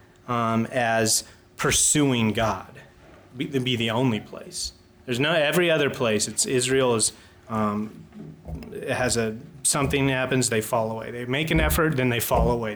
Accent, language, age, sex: American, English, 30-49, male